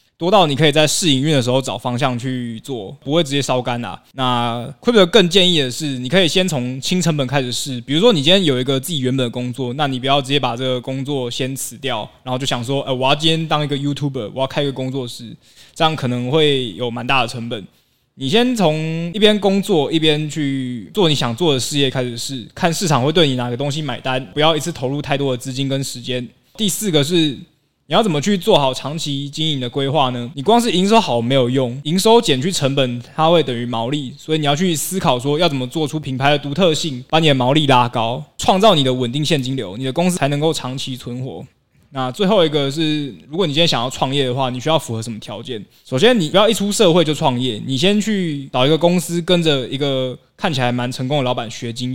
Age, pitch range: 20-39, 130-160 Hz